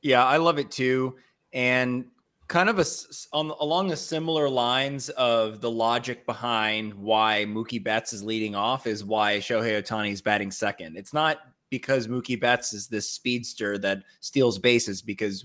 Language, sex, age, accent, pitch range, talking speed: English, male, 30-49, American, 115-145 Hz, 165 wpm